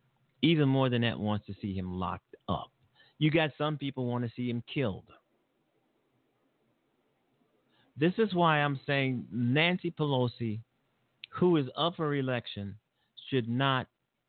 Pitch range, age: 110-135 Hz, 50-69